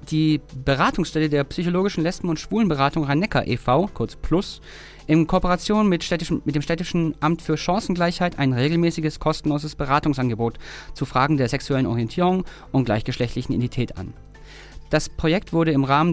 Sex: male